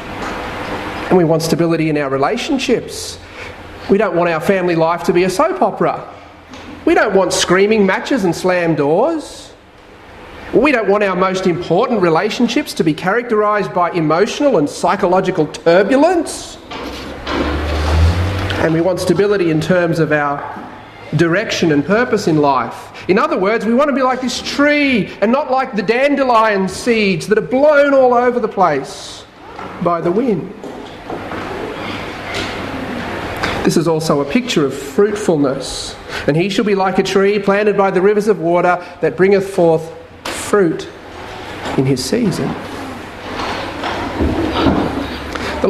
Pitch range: 175-235 Hz